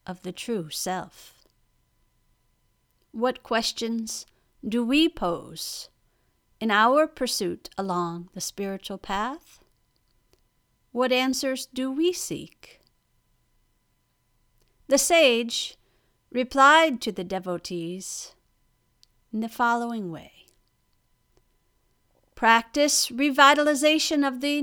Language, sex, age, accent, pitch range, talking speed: English, female, 50-69, American, 175-260 Hz, 85 wpm